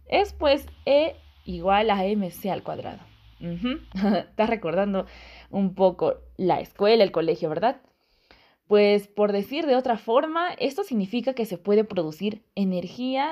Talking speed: 135 wpm